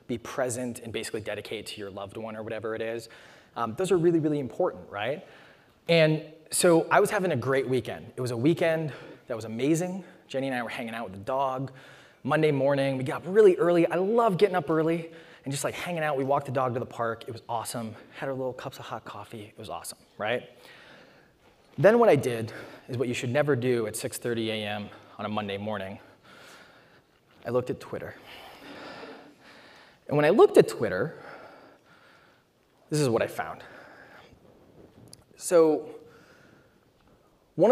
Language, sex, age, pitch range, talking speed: English, male, 20-39, 115-160 Hz, 185 wpm